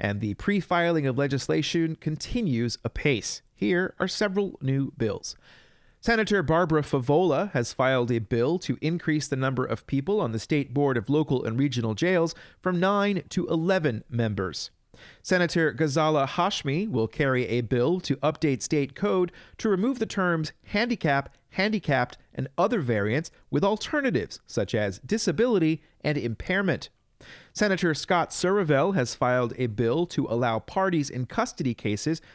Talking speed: 145 wpm